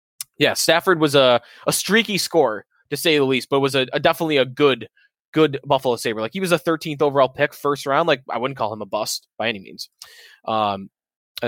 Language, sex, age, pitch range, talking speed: English, male, 20-39, 135-175 Hz, 220 wpm